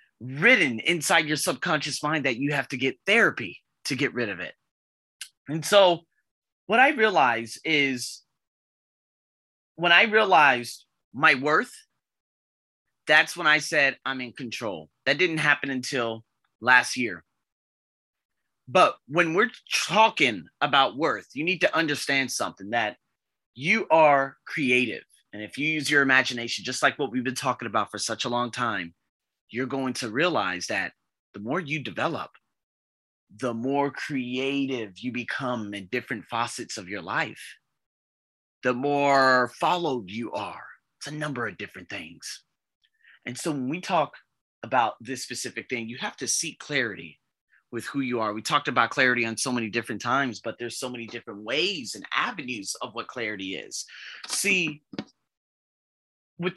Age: 30-49